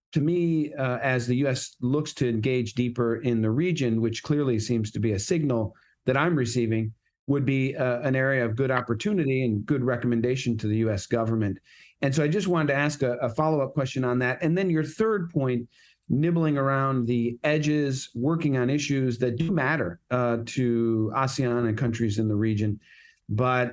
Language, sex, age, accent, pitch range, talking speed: English, male, 40-59, American, 115-135 Hz, 190 wpm